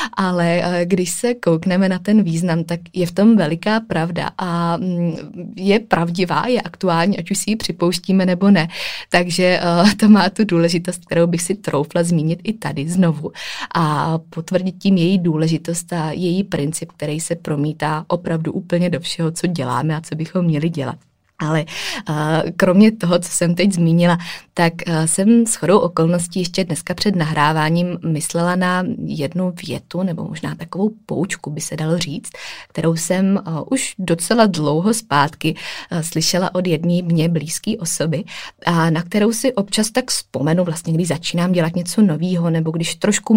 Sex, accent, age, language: female, native, 20-39, Czech